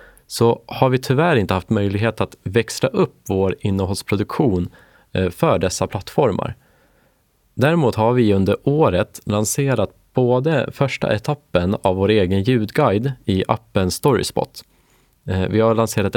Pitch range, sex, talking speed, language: 95-125 Hz, male, 125 wpm, Swedish